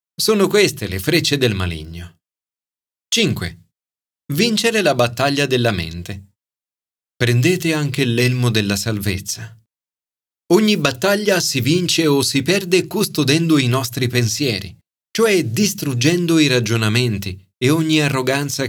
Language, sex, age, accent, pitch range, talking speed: Italian, male, 30-49, native, 100-155 Hz, 110 wpm